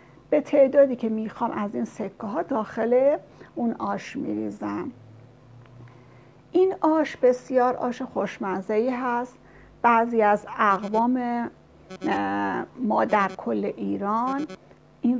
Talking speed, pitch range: 105 wpm, 210-255 Hz